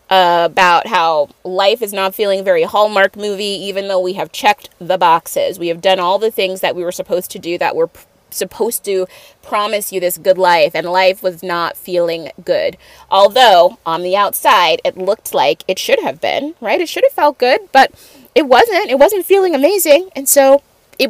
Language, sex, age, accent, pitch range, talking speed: English, female, 20-39, American, 190-280 Hz, 200 wpm